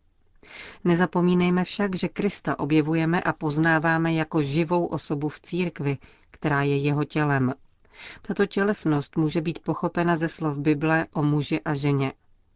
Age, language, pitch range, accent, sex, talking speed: 40-59, Czech, 145-170 Hz, native, female, 135 wpm